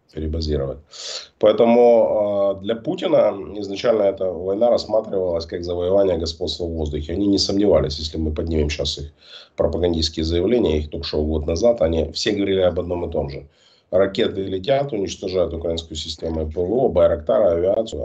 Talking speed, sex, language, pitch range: 145 wpm, male, Russian, 80-105 Hz